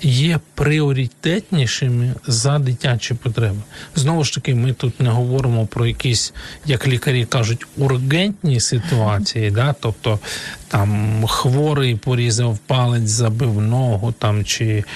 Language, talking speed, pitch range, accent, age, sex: Ukrainian, 115 wpm, 115-145 Hz, native, 40-59, male